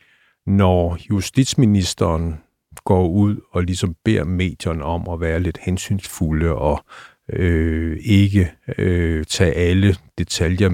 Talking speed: 100 wpm